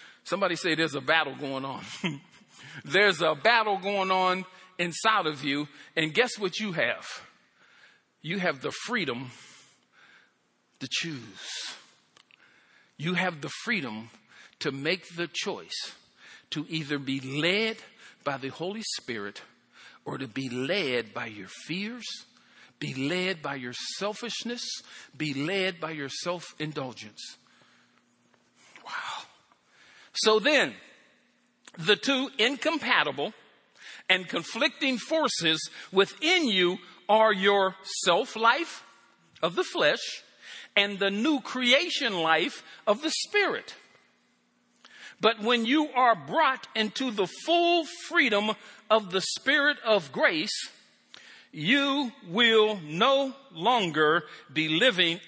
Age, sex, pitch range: 50-69, male, 160-240 Hz